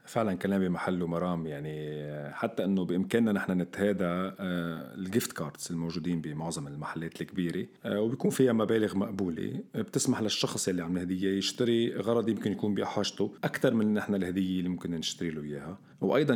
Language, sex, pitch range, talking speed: Arabic, male, 85-100 Hz, 145 wpm